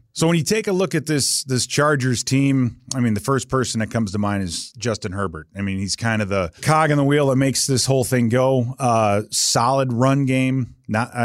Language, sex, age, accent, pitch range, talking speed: English, male, 30-49, American, 105-130 Hz, 240 wpm